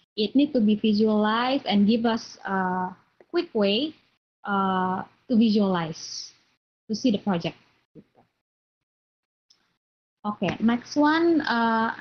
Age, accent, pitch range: 20-39, native, 195-250 Hz